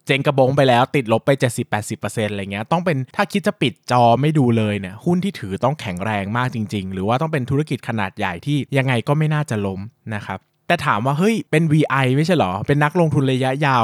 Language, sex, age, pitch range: Thai, male, 20-39, 110-150 Hz